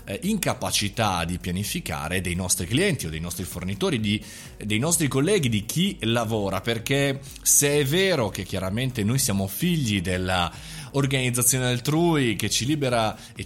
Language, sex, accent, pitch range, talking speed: Italian, male, native, 95-140 Hz, 145 wpm